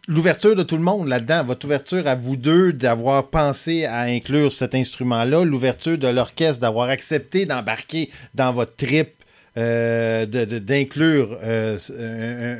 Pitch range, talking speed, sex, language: 115-150 Hz, 150 wpm, male, French